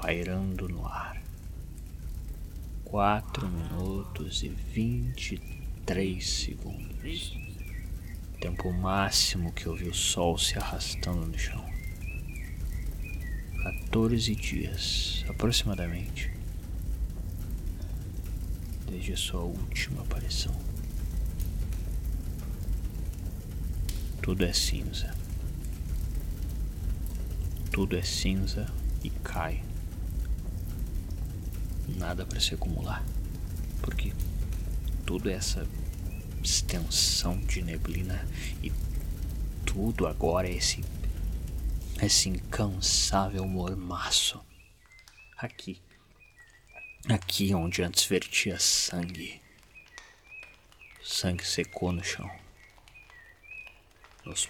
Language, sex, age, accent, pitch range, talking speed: Portuguese, male, 30-49, Brazilian, 80-95 Hz, 70 wpm